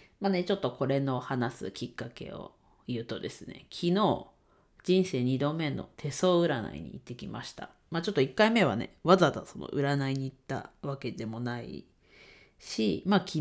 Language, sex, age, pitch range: Japanese, female, 40-59, 130-180 Hz